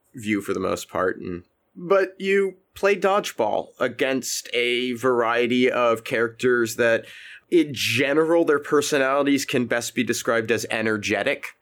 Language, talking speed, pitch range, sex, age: English, 130 wpm, 110-140 Hz, male, 30-49